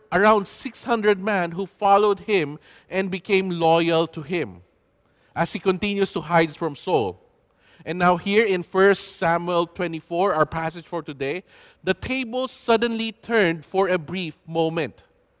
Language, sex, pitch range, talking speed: English, male, 160-210 Hz, 145 wpm